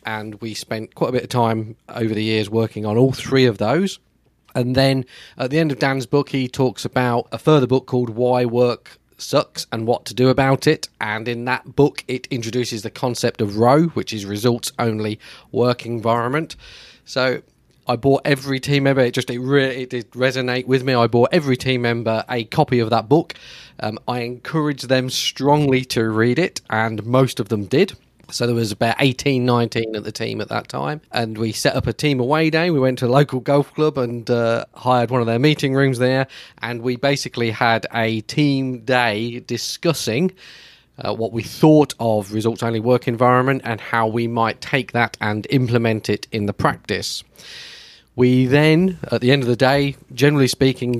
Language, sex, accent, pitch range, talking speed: English, male, British, 115-135 Hz, 200 wpm